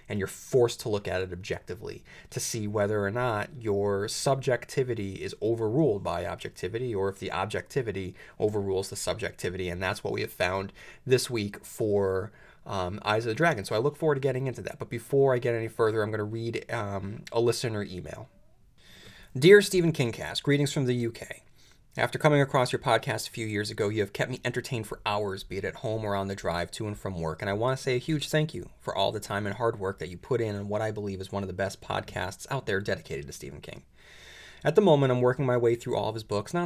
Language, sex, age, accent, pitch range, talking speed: English, male, 30-49, American, 95-120 Hz, 240 wpm